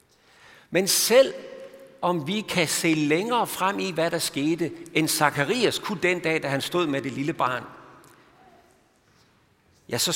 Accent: native